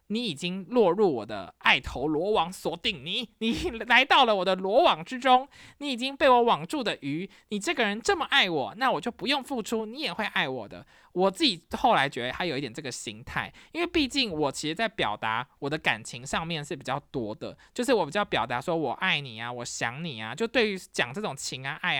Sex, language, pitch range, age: male, Chinese, 150-230 Hz, 20-39